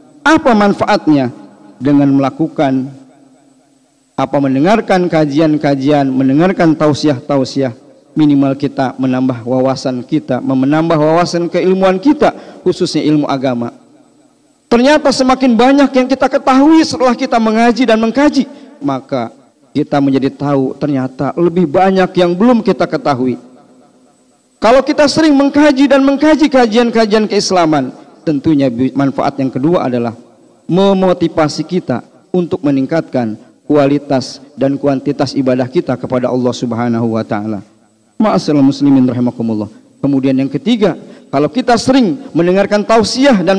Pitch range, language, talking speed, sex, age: 135-220 Hz, Indonesian, 110 wpm, male, 50-69